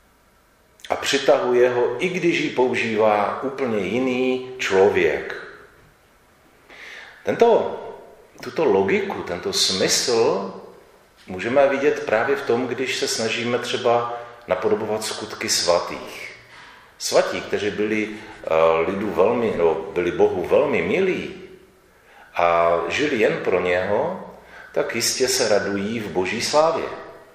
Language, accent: Czech, native